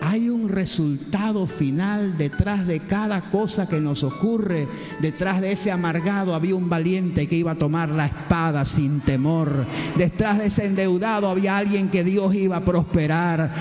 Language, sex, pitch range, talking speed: Spanish, male, 175-265 Hz, 165 wpm